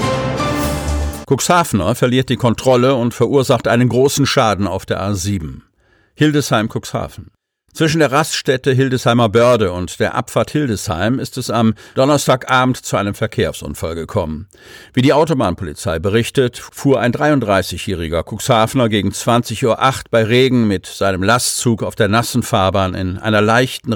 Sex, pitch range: male, 100-125 Hz